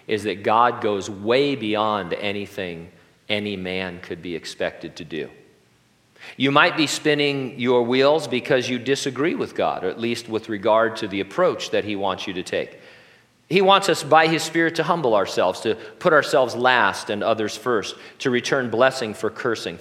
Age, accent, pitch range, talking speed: 40-59, American, 105-140 Hz, 180 wpm